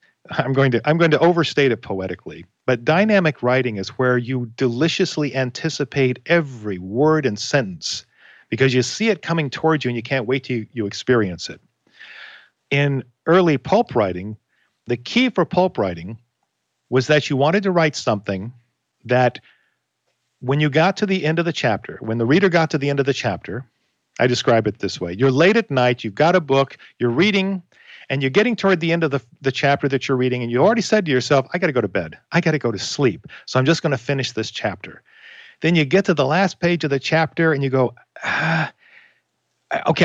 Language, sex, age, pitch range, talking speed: English, male, 50-69, 120-160 Hz, 215 wpm